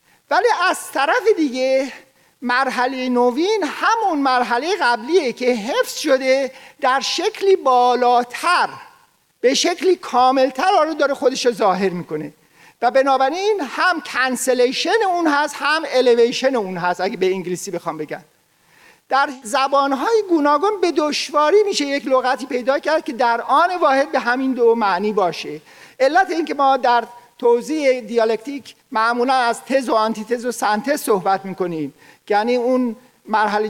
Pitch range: 230-295 Hz